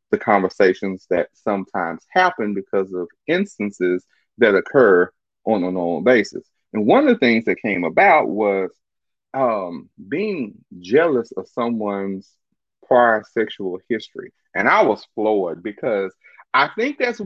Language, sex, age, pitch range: English, male, 30-49, 110-170 Hz